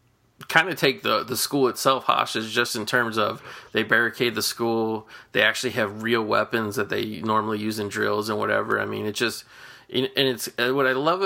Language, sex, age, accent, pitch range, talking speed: English, male, 30-49, American, 110-130 Hz, 205 wpm